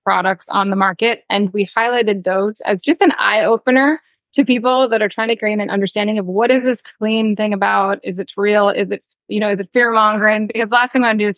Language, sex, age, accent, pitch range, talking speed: English, female, 20-39, American, 200-235 Hz, 255 wpm